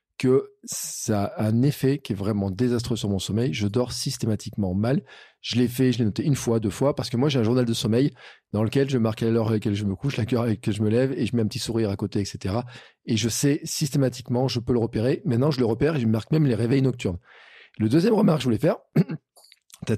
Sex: male